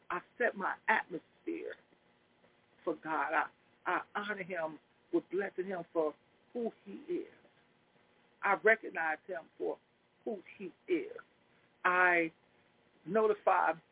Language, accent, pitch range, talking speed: English, American, 180-270 Hz, 110 wpm